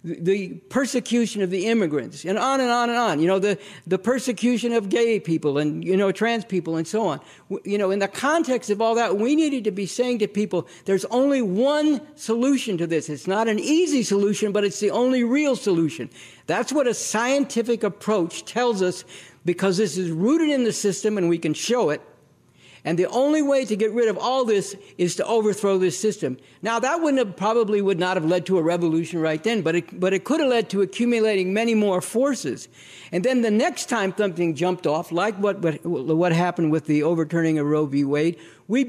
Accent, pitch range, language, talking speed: American, 170-230 Hz, English, 215 wpm